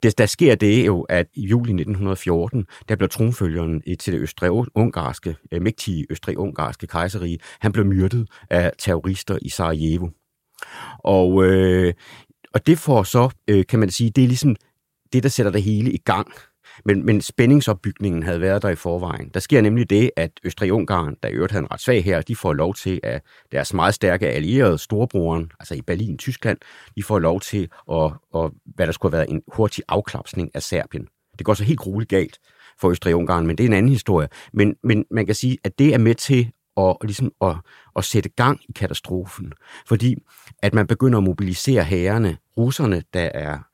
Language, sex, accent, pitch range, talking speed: Danish, male, native, 90-115 Hz, 190 wpm